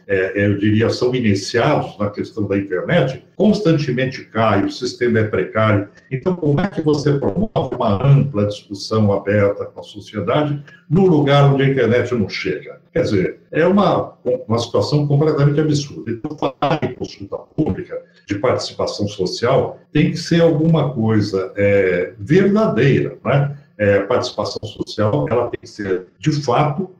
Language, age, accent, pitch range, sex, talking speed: Portuguese, 60-79, Brazilian, 110-160 Hz, male, 150 wpm